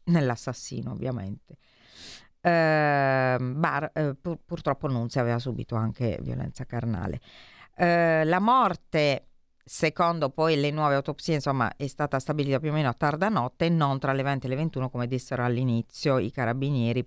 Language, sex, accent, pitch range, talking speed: Italian, female, native, 130-180 Hz, 160 wpm